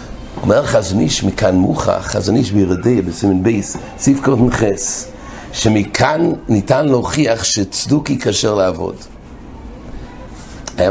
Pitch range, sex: 105-145 Hz, male